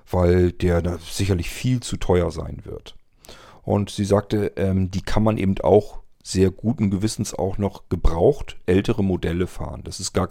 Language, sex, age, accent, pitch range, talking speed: German, male, 40-59, German, 90-110 Hz, 175 wpm